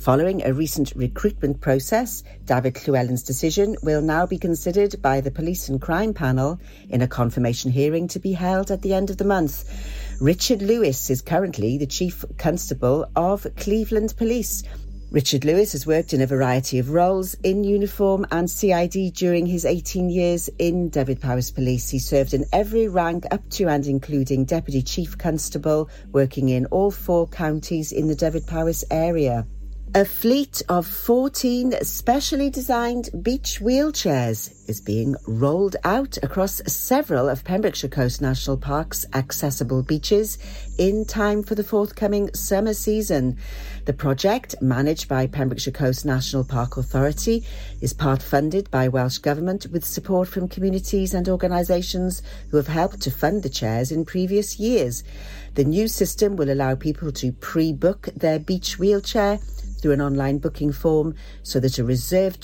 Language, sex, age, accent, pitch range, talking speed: English, female, 50-69, British, 135-190 Hz, 155 wpm